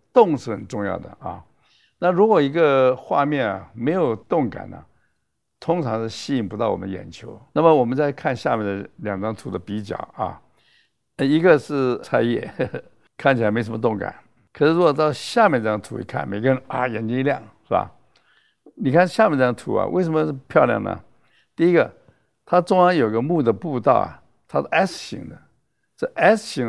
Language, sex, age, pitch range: Chinese, male, 60-79, 110-160 Hz